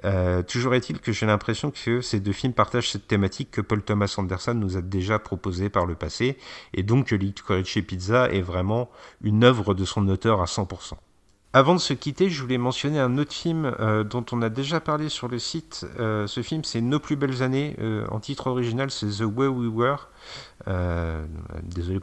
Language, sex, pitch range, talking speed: French, male, 100-130 Hz, 205 wpm